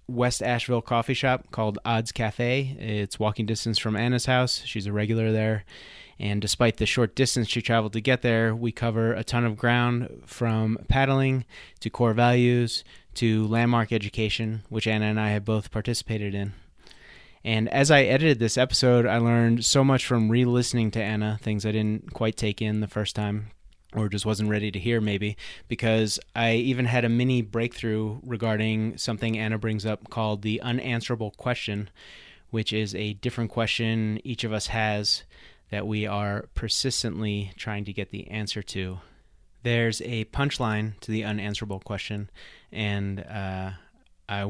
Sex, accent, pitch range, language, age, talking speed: male, American, 105-120 Hz, English, 30-49, 165 wpm